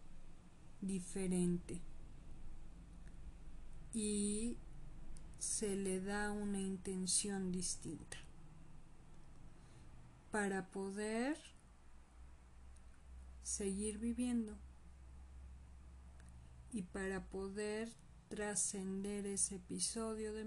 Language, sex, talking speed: Spanish, female, 55 wpm